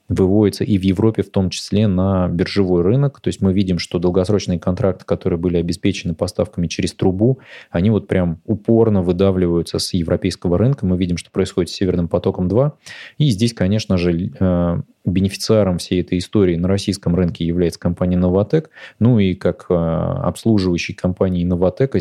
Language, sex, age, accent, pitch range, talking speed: Russian, male, 20-39, native, 90-105 Hz, 160 wpm